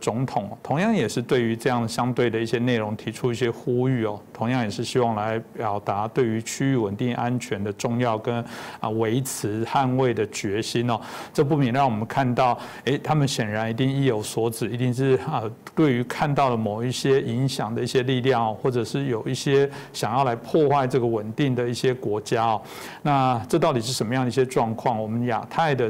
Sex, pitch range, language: male, 115-135 Hz, Chinese